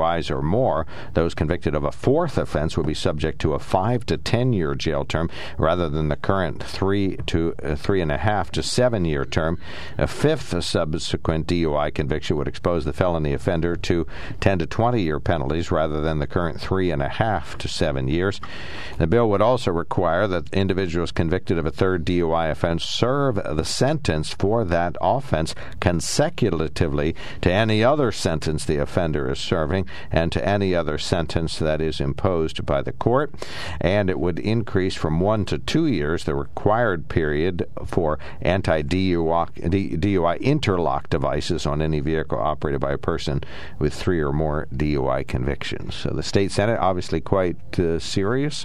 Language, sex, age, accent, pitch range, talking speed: English, male, 60-79, American, 80-100 Hz, 165 wpm